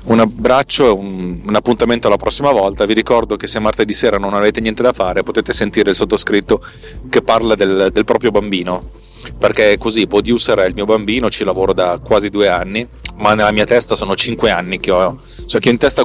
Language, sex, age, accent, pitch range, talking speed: Italian, male, 30-49, native, 95-115 Hz, 215 wpm